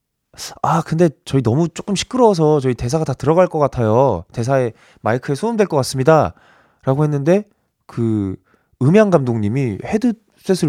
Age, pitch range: 20-39, 100-150 Hz